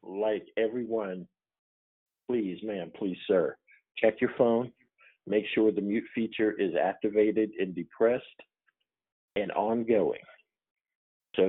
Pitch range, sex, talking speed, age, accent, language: 95-115 Hz, male, 110 wpm, 50-69, American, English